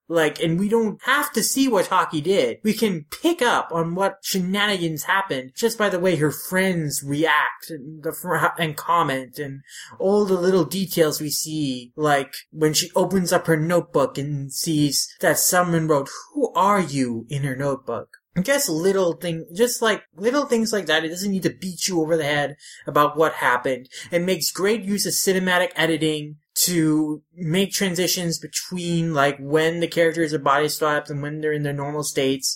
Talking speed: 190 wpm